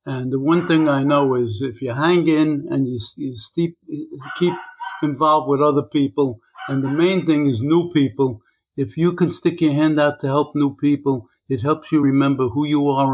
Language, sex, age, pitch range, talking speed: English, male, 60-79, 125-150 Hz, 200 wpm